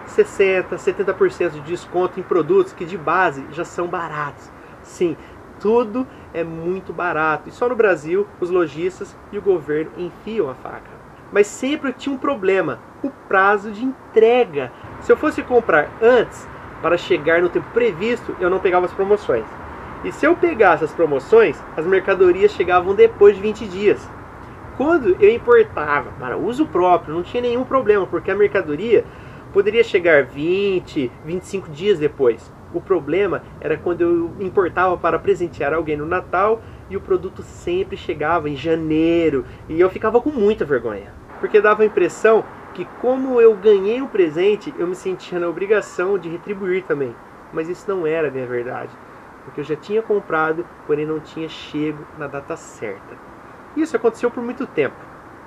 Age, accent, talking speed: 30-49, Brazilian, 165 wpm